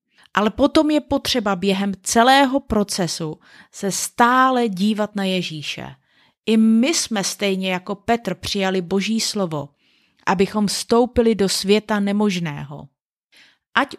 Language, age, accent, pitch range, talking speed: Czech, 30-49, native, 190-245 Hz, 115 wpm